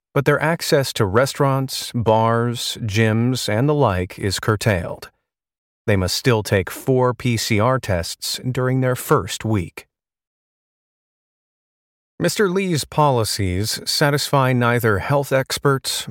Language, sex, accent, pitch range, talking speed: English, male, American, 105-140 Hz, 110 wpm